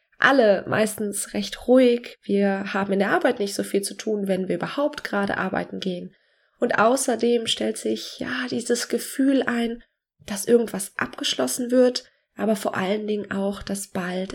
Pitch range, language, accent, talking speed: 205-260 Hz, German, German, 165 wpm